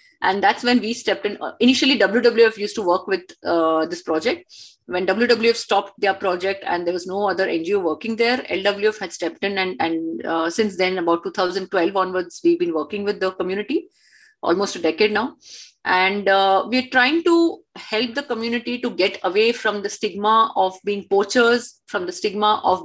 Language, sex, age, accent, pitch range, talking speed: English, female, 30-49, Indian, 185-245 Hz, 190 wpm